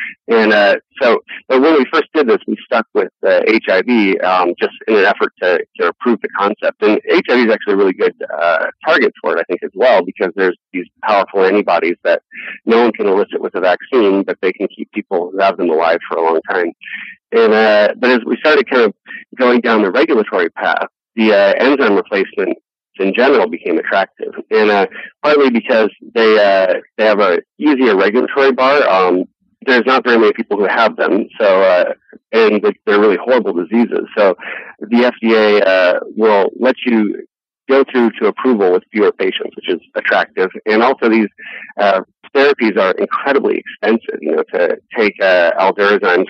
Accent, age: American, 40-59